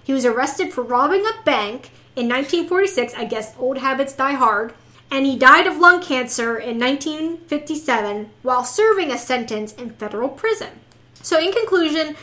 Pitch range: 245-355 Hz